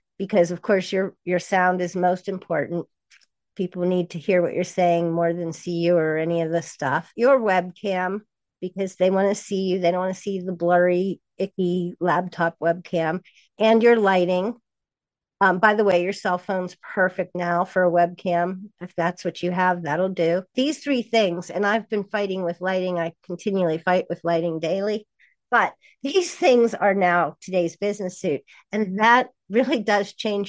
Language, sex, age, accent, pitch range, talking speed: English, female, 50-69, American, 175-210 Hz, 185 wpm